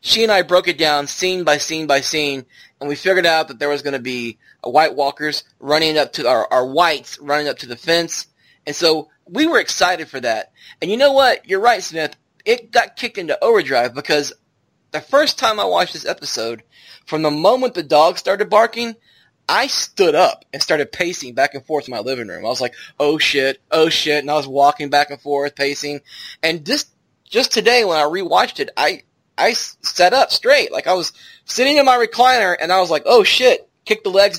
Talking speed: 220 wpm